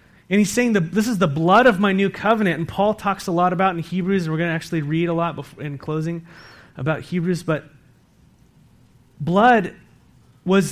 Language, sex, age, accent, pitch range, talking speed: English, male, 30-49, American, 155-190 Hz, 190 wpm